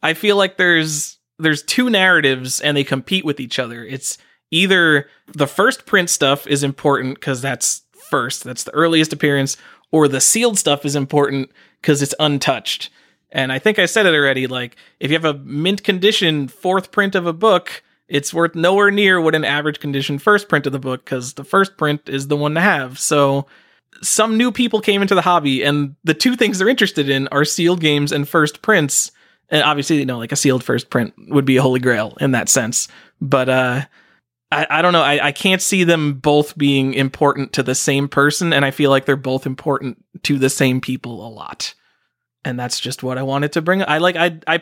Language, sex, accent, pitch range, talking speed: English, male, American, 135-175 Hz, 215 wpm